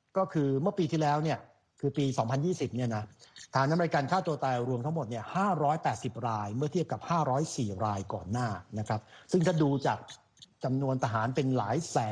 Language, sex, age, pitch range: Thai, male, 60-79, 120-155 Hz